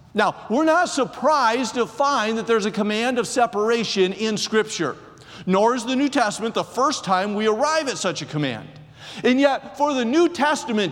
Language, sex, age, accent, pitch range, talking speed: English, male, 50-69, American, 195-260 Hz, 185 wpm